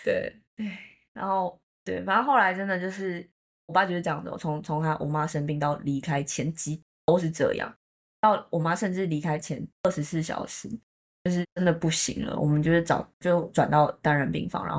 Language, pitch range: Chinese, 150-185 Hz